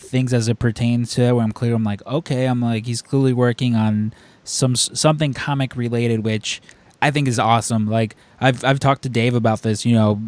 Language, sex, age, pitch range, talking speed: English, male, 20-39, 115-130 Hz, 215 wpm